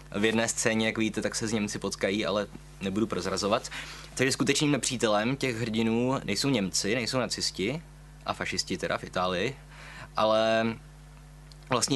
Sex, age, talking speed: male, 20-39, 145 wpm